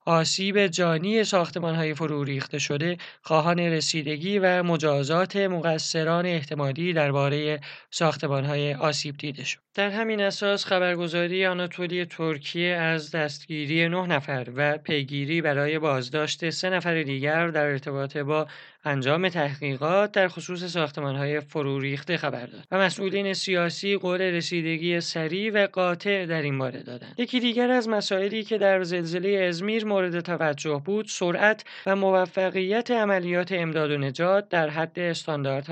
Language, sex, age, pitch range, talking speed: Persian, male, 30-49, 155-190 Hz, 130 wpm